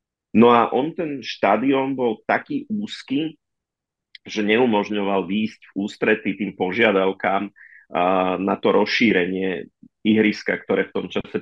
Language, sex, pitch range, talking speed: Slovak, male, 95-105 Hz, 120 wpm